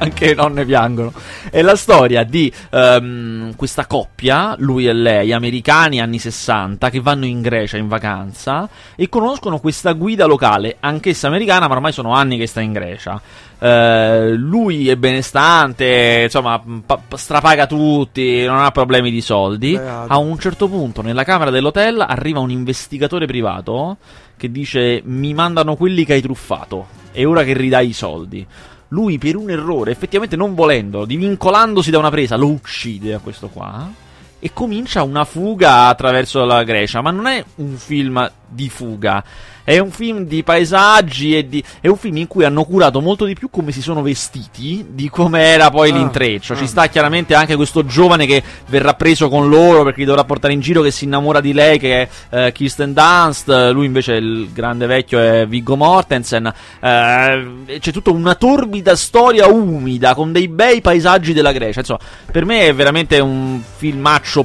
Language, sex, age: Italian, male, 30-49